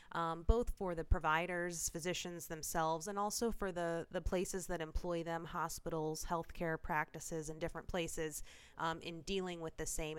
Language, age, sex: English, 20-39, female